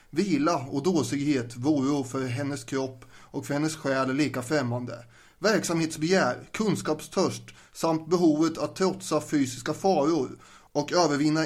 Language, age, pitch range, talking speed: English, 30-49, 140-165 Hz, 125 wpm